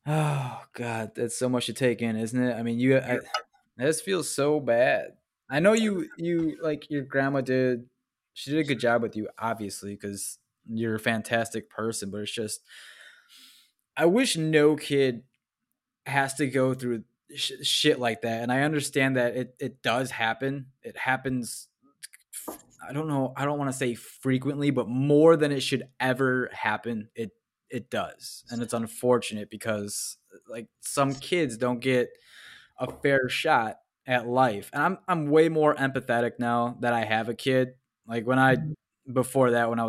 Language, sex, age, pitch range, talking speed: English, male, 20-39, 115-140 Hz, 170 wpm